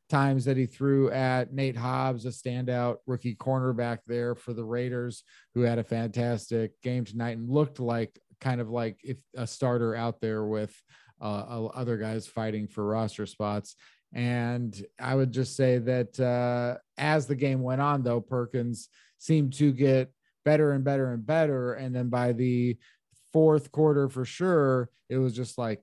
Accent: American